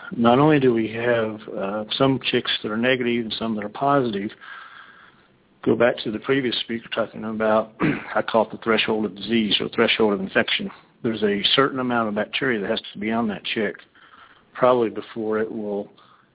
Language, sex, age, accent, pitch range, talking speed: English, male, 50-69, American, 110-130 Hz, 190 wpm